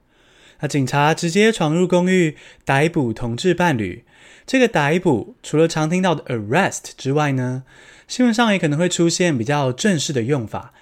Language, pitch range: Chinese, 120-170 Hz